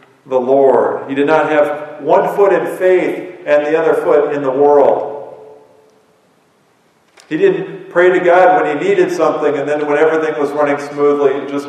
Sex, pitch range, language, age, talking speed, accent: male, 130-155 Hz, English, 40-59, 180 wpm, American